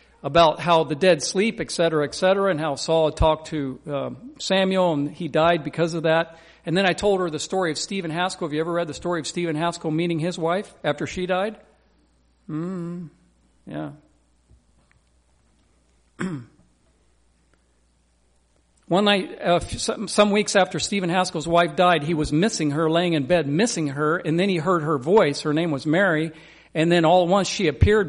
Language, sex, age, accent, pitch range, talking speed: English, male, 50-69, American, 155-200 Hz, 185 wpm